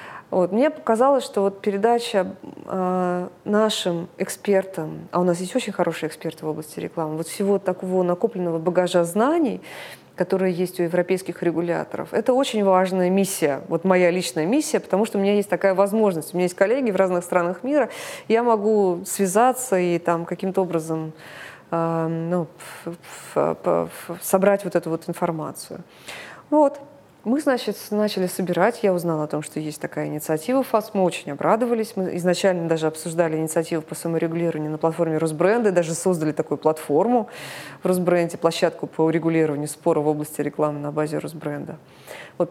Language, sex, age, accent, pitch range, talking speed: Russian, female, 20-39, native, 165-205 Hz, 155 wpm